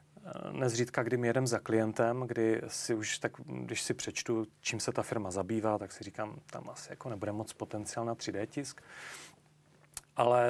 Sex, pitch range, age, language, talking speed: male, 110-125 Hz, 30-49, Czech, 170 wpm